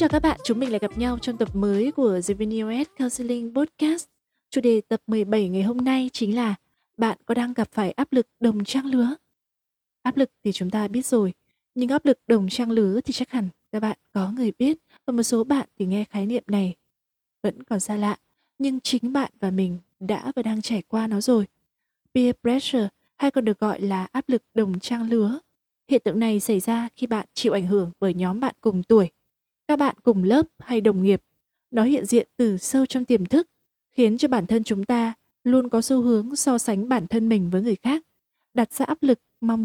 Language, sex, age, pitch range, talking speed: Vietnamese, female, 20-39, 210-255 Hz, 220 wpm